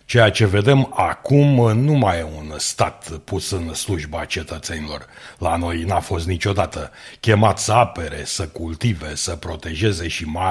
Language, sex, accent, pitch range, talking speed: Romanian, male, native, 80-105 Hz, 155 wpm